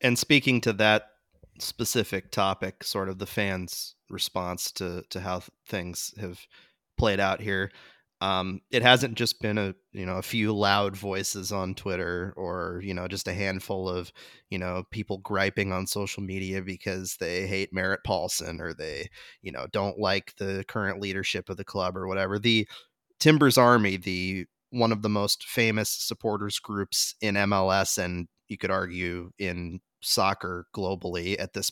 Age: 30-49